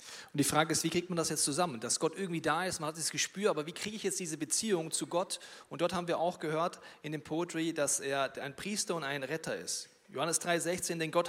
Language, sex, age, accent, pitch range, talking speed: German, male, 40-59, German, 160-195 Hz, 260 wpm